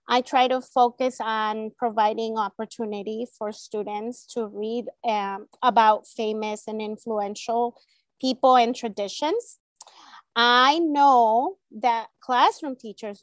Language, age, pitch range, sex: English, 30-49, 220-260 Hz, female